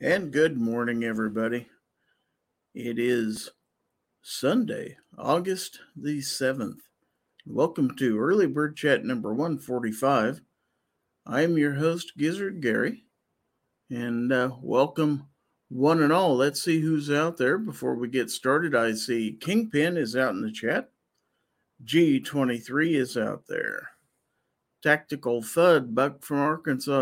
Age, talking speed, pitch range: 50-69, 120 wpm, 120-155 Hz